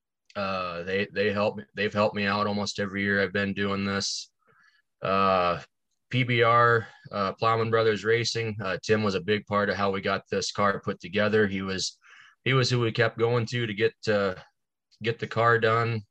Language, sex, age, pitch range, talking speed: English, male, 20-39, 100-110 Hz, 195 wpm